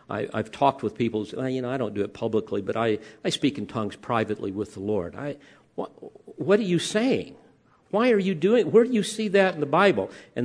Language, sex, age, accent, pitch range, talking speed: English, male, 50-69, American, 130-195 Hz, 255 wpm